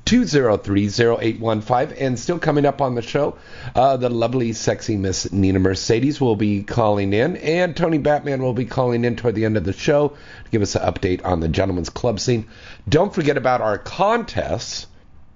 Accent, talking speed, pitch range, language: American, 185 wpm, 95-130 Hz, English